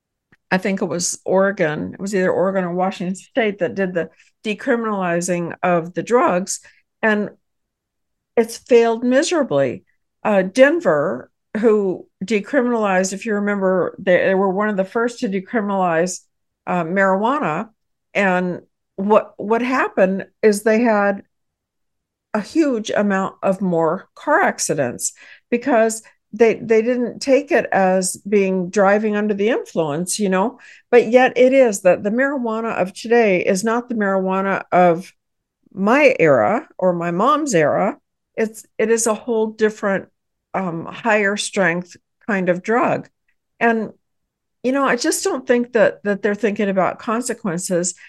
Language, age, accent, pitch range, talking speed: English, 60-79, American, 185-235 Hz, 140 wpm